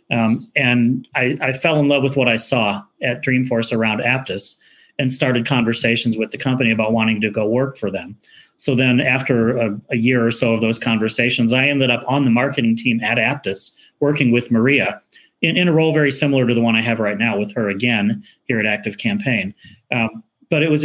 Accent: American